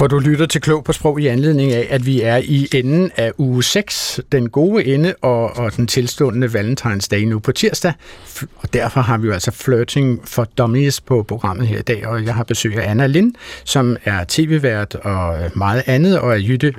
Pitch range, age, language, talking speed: 115-155 Hz, 60-79, Danish, 215 wpm